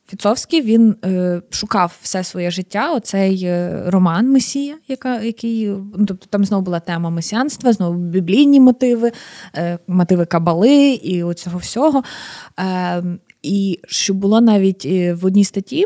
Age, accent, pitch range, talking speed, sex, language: 20-39, native, 180-225 Hz, 130 wpm, female, Ukrainian